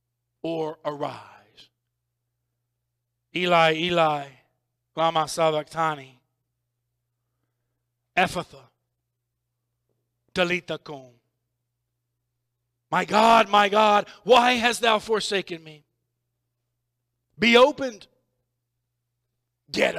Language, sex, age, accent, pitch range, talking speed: English, male, 50-69, American, 120-180 Hz, 65 wpm